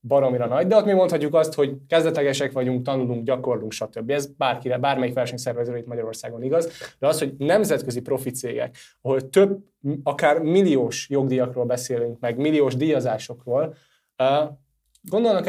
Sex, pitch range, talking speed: male, 125-145 Hz, 140 wpm